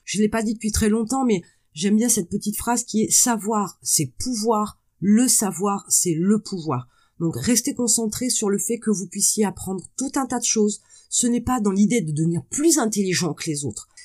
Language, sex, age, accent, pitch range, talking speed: French, female, 30-49, French, 170-225 Hz, 220 wpm